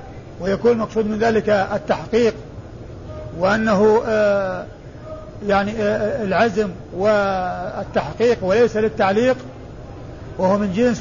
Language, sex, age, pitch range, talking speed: Arabic, male, 50-69, 200-235 Hz, 75 wpm